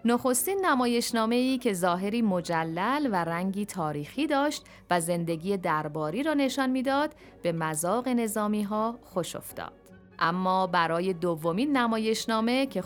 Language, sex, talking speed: Persian, female, 125 wpm